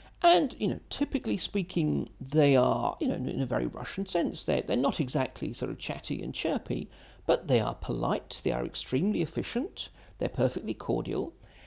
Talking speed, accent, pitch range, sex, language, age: 175 wpm, British, 125-200 Hz, male, English, 50-69